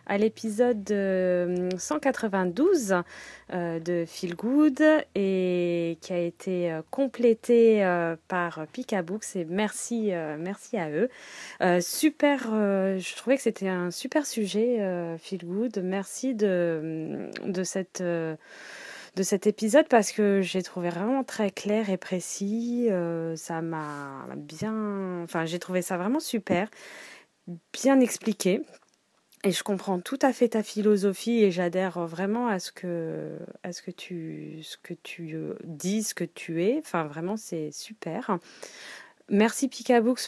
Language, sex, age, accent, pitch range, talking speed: French, female, 20-39, French, 175-220 Hz, 130 wpm